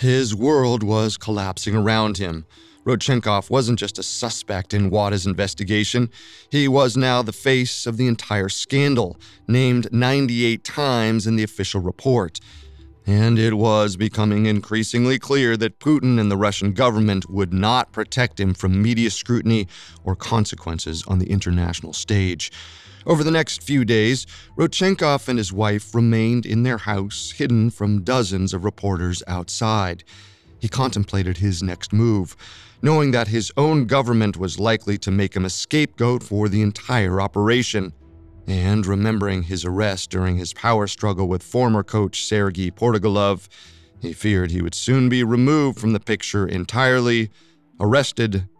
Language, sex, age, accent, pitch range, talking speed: English, male, 30-49, American, 95-120 Hz, 150 wpm